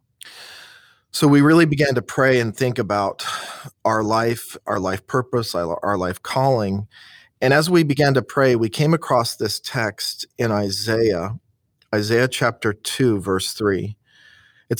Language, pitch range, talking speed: English, 105-130 Hz, 145 wpm